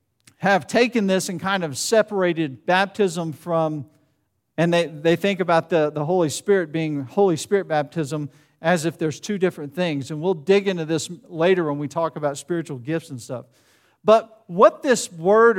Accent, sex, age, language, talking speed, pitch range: American, male, 50-69, English, 175 wpm, 170-225 Hz